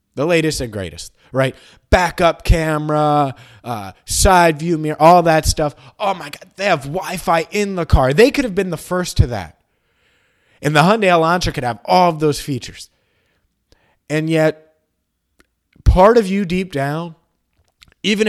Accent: American